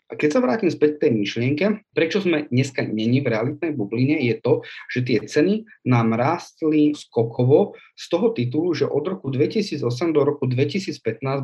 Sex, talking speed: male, 175 wpm